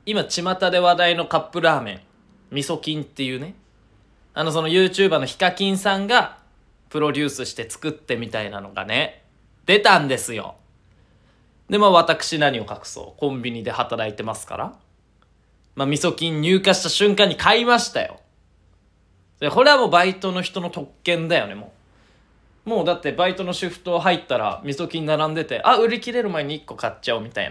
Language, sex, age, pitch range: Japanese, male, 20-39, 135-200 Hz